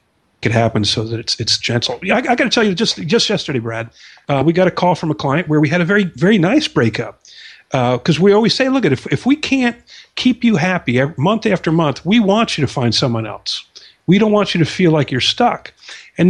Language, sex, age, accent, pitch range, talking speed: English, male, 50-69, American, 135-185 Hz, 245 wpm